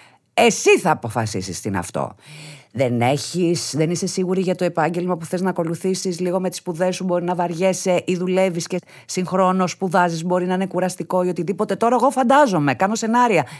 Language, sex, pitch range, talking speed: Greek, female, 155-230 Hz, 180 wpm